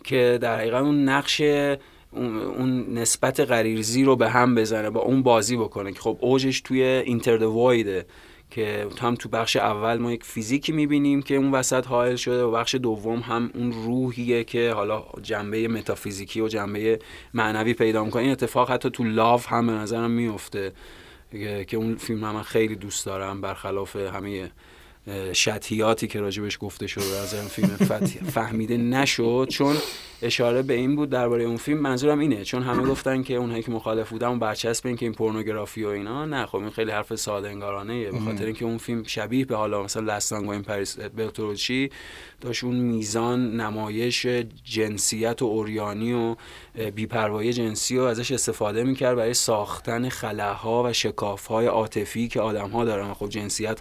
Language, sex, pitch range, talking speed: Persian, male, 105-125 Hz, 160 wpm